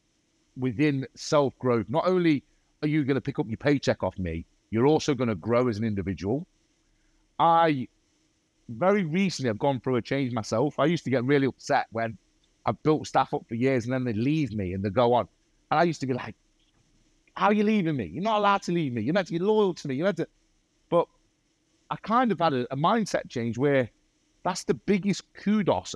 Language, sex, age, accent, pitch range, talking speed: English, male, 30-49, British, 125-165 Hz, 215 wpm